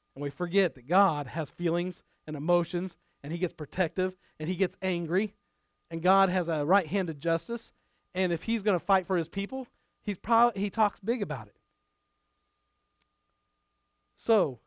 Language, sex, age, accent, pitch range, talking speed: English, male, 40-59, American, 140-190 Hz, 165 wpm